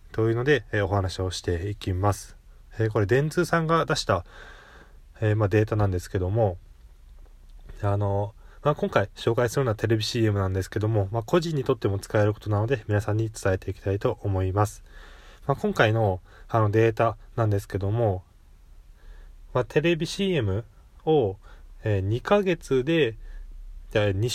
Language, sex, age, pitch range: Japanese, male, 20-39, 95-135 Hz